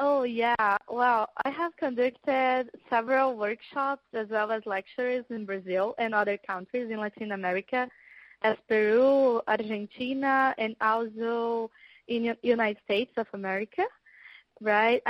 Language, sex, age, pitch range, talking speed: Turkish, female, 20-39, 220-255 Hz, 125 wpm